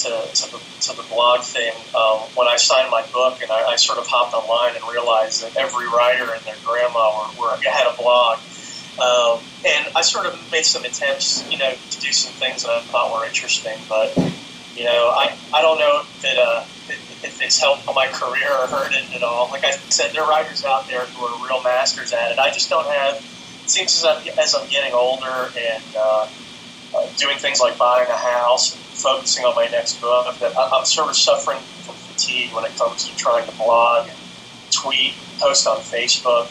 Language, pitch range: English, 120-135 Hz